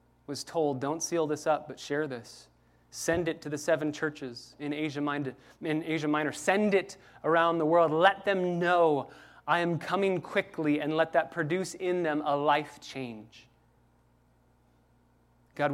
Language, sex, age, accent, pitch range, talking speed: English, male, 20-39, American, 145-180 Hz, 155 wpm